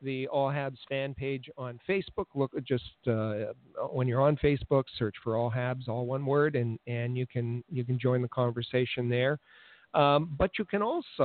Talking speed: 190 wpm